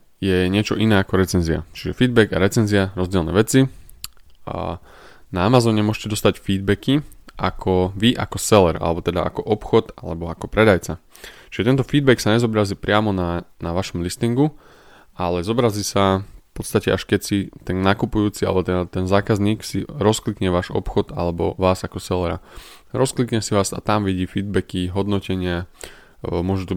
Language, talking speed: Slovak, 155 wpm